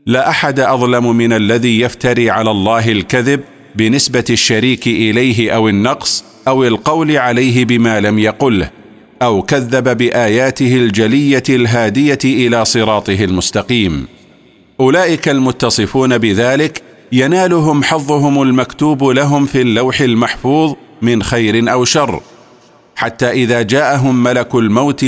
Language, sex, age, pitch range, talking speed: Arabic, male, 40-59, 115-135 Hz, 110 wpm